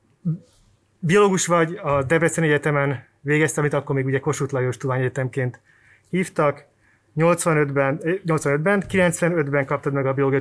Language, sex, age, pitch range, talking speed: Hungarian, male, 30-49, 115-150 Hz, 125 wpm